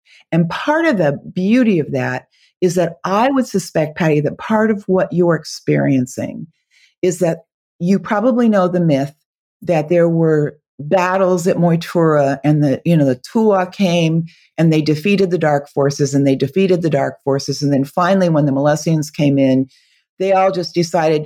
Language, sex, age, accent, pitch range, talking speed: English, female, 40-59, American, 145-185 Hz, 180 wpm